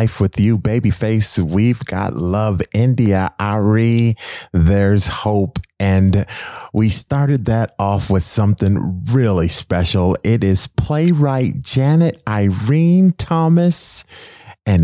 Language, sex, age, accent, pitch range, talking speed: English, male, 30-49, American, 90-120 Hz, 110 wpm